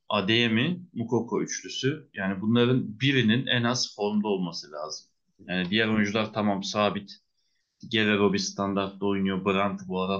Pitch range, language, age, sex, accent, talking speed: 105-140 Hz, Turkish, 30-49, male, native, 135 wpm